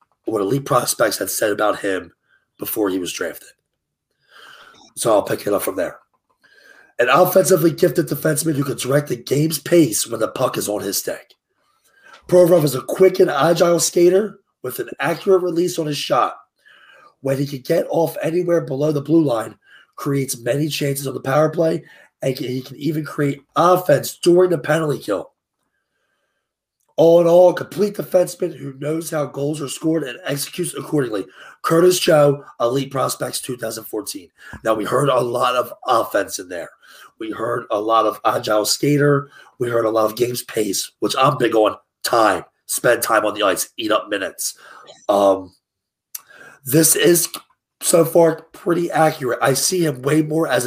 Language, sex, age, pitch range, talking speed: English, male, 30-49, 135-170 Hz, 170 wpm